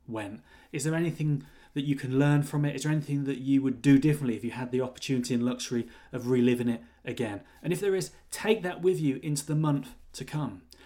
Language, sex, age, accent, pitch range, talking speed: English, male, 30-49, British, 135-170 Hz, 225 wpm